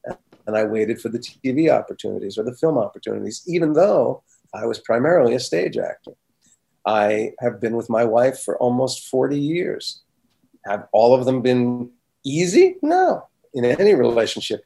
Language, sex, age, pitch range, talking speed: English, male, 40-59, 110-130 Hz, 160 wpm